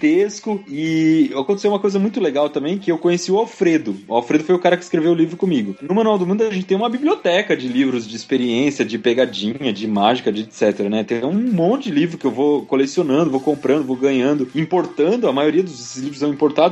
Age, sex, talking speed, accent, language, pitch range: 20-39, male, 225 wpm, Brazilian, Portuguese, 135-190 Hz